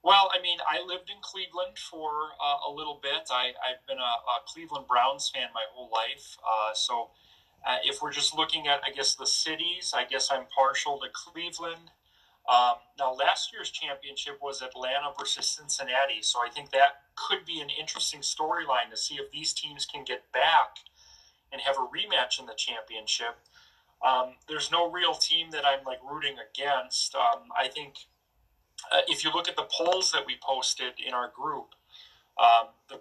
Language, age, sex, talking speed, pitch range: English, 30-49, male, 185 wpm, 125-155 Hz